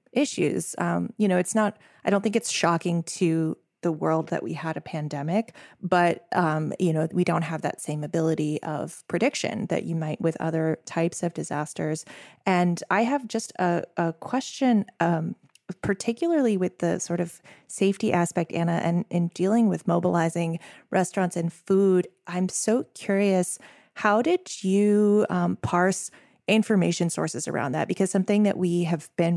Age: 20-39